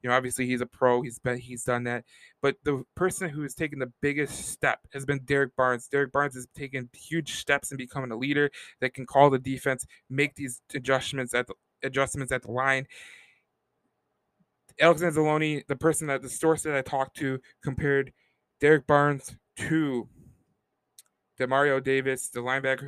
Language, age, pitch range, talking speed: English, 20-39, 125-145 Hz, 165 wpm